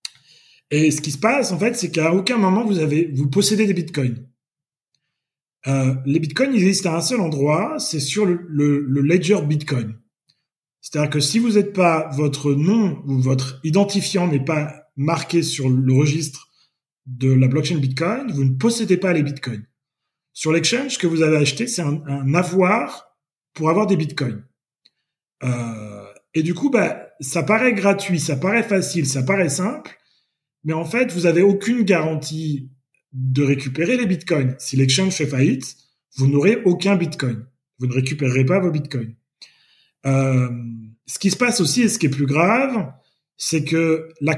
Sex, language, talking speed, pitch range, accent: male, French, 175 wpm, 135-185 Hz, French